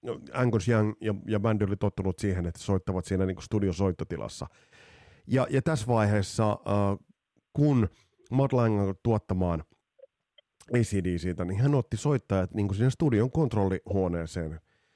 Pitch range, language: 90-120 Hz, Finnish